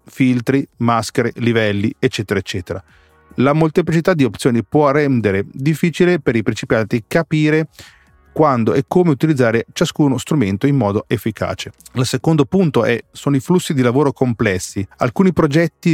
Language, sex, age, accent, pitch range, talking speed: Italian, male, 30-49, native, 110-150 Hz, 140 wpm